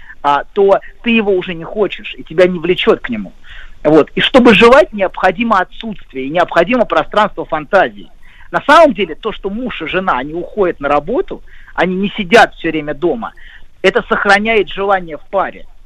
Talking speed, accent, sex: 175 wpm, native, male